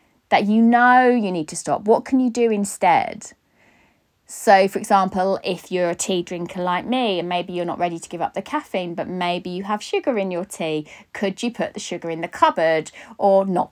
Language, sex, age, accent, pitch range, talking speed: English, female, 20-39, British, 165-220 Hz, 220 wpm